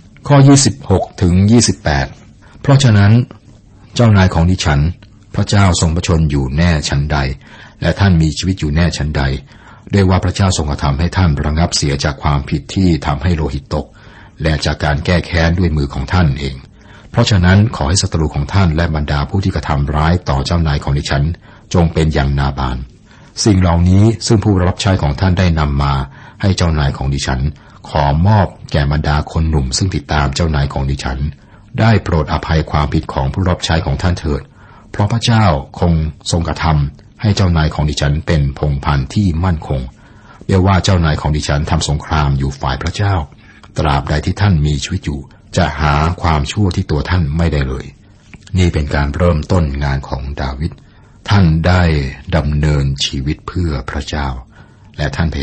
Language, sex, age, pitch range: Thai, male, 60-79, 70-95 Hz